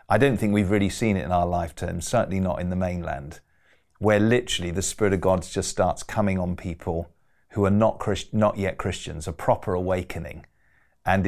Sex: male